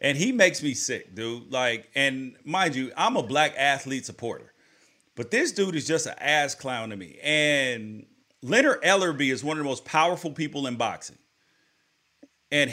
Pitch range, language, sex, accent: 145-195 Hz, English, male, American